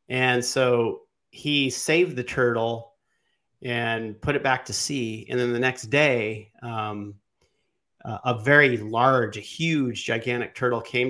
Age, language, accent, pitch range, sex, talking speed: 40-59, English, American, 115-135 Hz, male, 140 wpm